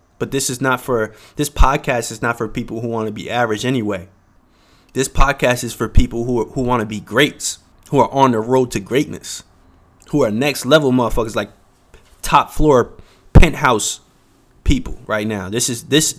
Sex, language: male, English